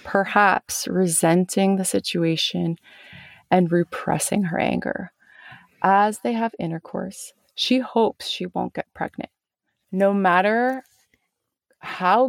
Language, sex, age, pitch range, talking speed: English, female, 20-39, 175-230 Hz, 105 wpm